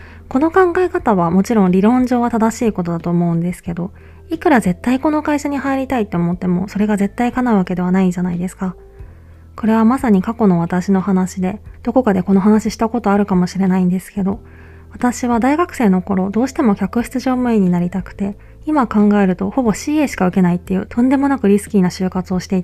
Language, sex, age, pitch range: Japanese, female, 20-39, 180-230 Hz